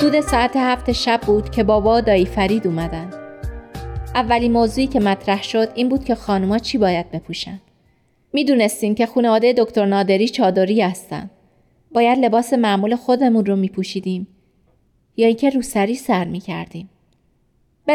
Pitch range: 195-245 Hz